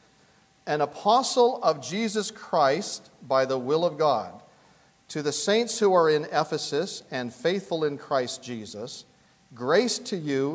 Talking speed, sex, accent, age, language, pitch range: 140 wpm, male, American, 40-59, English, 140-200 Hz